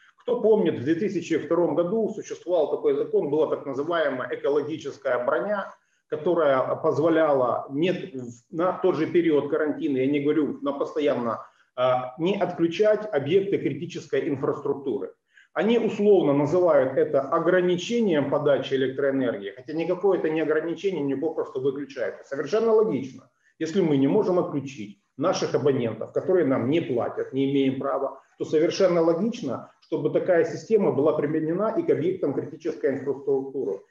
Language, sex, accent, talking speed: Ukrainian, male, native, 130 wpm